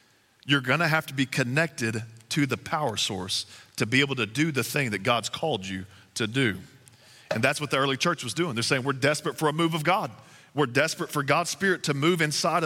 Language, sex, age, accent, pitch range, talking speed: English, male, 40-59, American, 115-155 Hz, 230 wpm